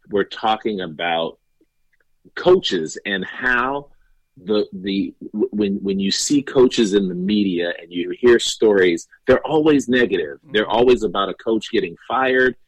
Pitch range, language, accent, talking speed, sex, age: 95-120 Hz, English, American, 140 wpm, male, 40-59